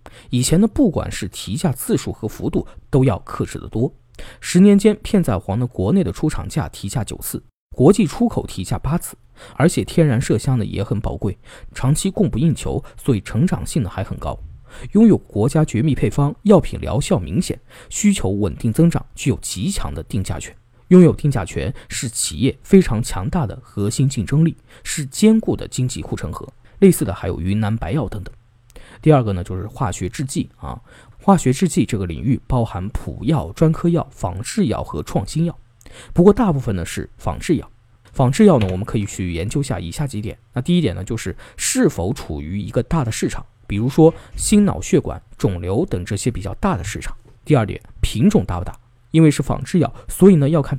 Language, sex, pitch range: Chinese, male, 105-160 Hz